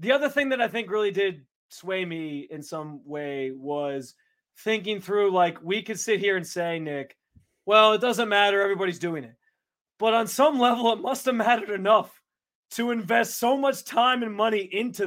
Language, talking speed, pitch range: English, 185 wpm, 185-235 Hz